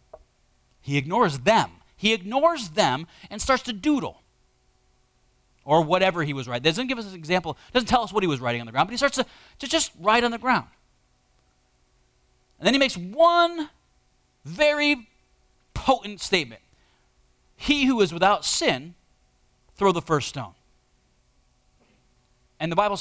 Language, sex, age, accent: English, male, 30-49, American